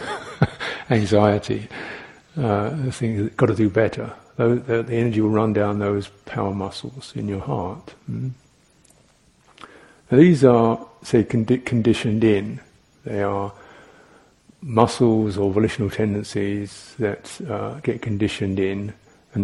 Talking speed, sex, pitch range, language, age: 125 wpm, male, 105-135 Hz, English, 50-69